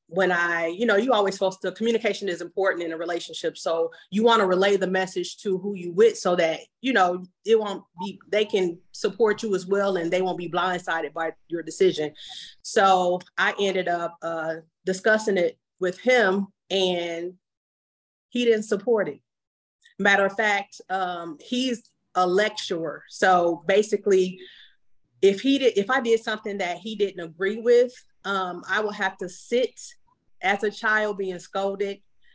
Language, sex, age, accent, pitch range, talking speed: English, female, 30-49, American, 175-205 Hz, 170 wpm